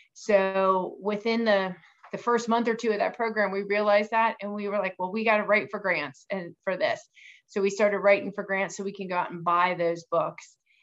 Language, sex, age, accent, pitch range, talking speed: English, female, 30-49, American, 185-210 Hz, 240 wpm